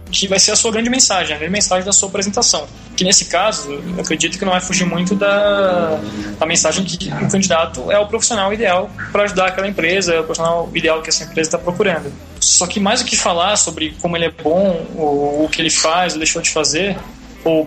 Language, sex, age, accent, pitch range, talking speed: Portuguese, male, 20-39, Brazilian, 155-200 Hz, 225 wpm